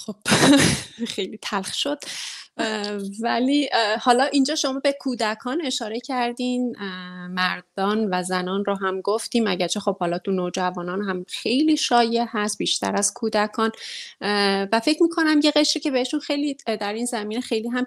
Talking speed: 145 wpm